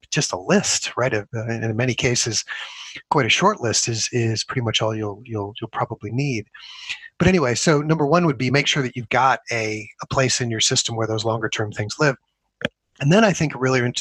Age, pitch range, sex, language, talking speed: 30-49, 115-145 Hz, male, English, 225 wpm